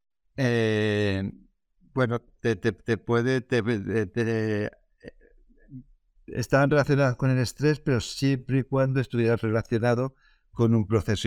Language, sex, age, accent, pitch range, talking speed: Spanish, male, 60-79, Spanish, 100-125 Hz, 120 wpm